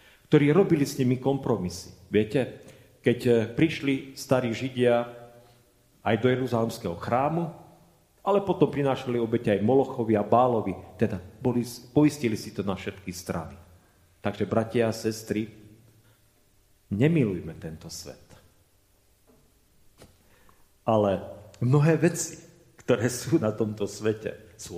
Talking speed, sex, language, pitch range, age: 110 wpm, male, Czech, 100-120 Hz, 40-59